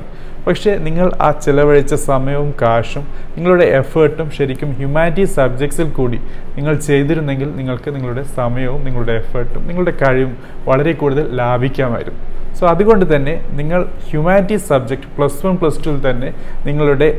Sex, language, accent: male, Malayalam, native